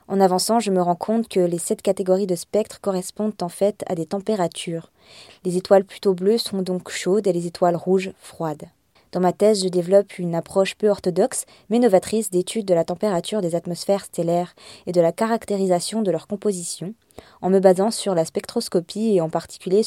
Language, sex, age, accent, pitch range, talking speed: French, female, 20-39, French, 170-200 Hz, 195 wpm